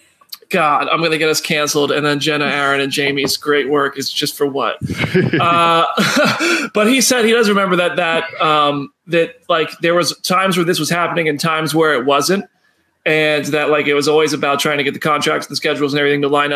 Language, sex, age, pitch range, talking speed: English, male, 30-49, 150-190 Hz, 225 wpm